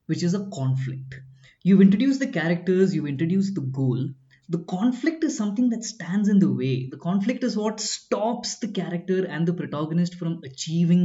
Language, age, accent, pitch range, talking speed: English, 20-39, Indian, 135-200 Hz, 180 wpm